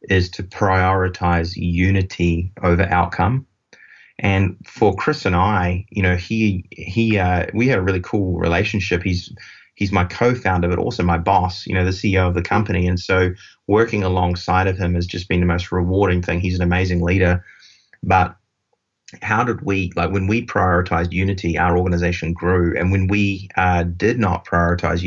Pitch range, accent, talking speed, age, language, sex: 90-100 Hz, Australian, 175 wpm, 30-49, English, male